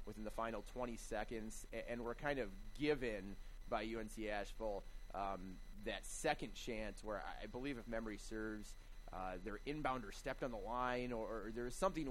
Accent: American